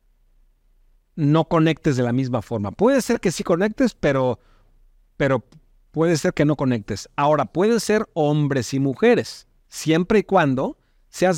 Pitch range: 130-170 Hz